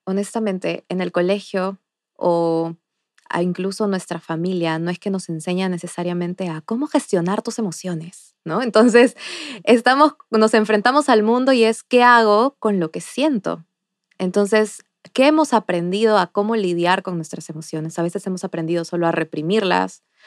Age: 20-39